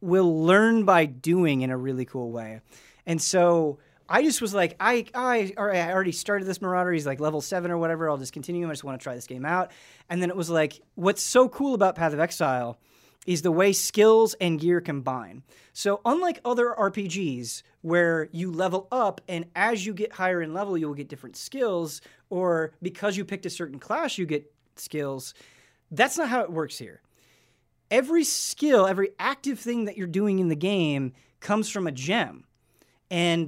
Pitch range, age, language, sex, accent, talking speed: 145-195 Hz, 30-49, English, male, American, 195 wpm